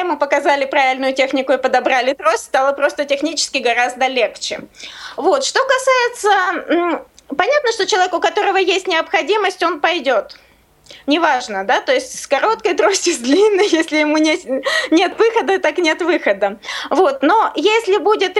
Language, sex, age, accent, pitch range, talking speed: Russian, female, 20-39, native, 280-370 Hz, 145 wpm